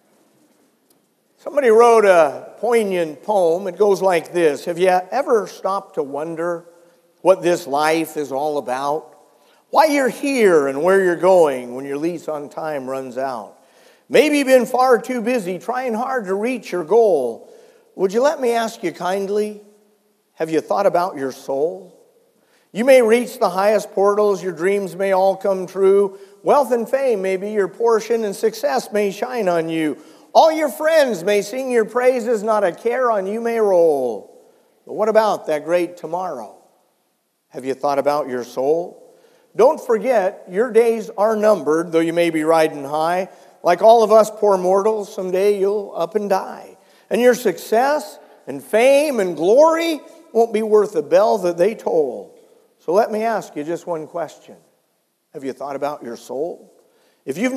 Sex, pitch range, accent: male, 170-245 Hz, American